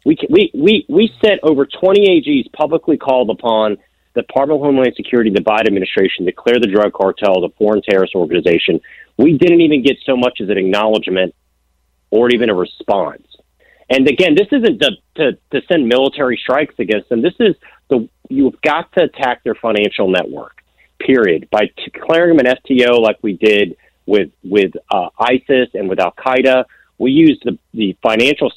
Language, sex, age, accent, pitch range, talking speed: English, male, 40-59, American, 100-145 Hz, 175 wpm